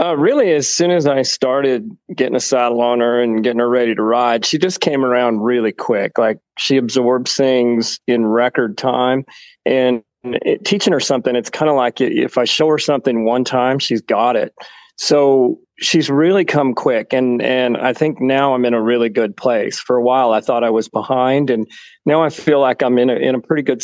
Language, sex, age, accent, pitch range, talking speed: English, male, 40-59, American, 115-140 Hz, 210 wpm